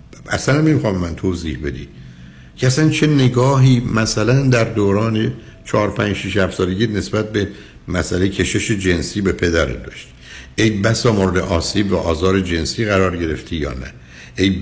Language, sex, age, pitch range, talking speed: Persian, male, 60-79, 80-120 Hz, 150 wpm